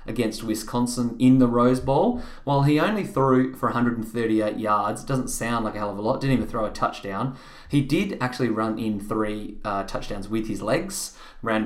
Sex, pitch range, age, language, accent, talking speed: male, 105-130 Hz, 20-39, English, Australian, 195 wpm